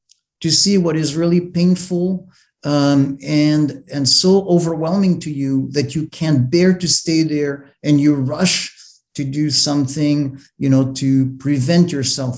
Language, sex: English, male